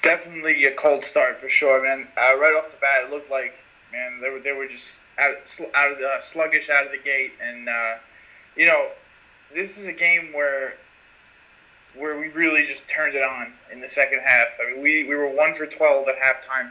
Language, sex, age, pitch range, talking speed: English, male, 20-39, 135-160 Hz, 225 wpm